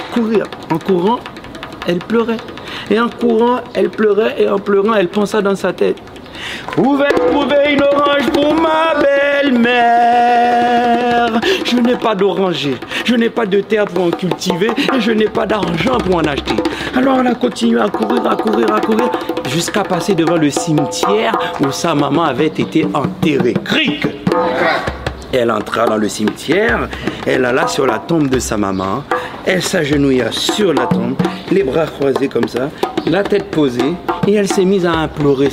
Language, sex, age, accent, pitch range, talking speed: French, male, 60-79, French, 160-230 Hz, 170 wpm